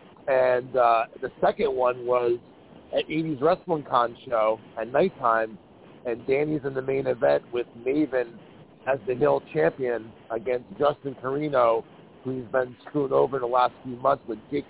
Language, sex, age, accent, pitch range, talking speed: English, male, 40-59, American, 125-150 Hz, 160 wpm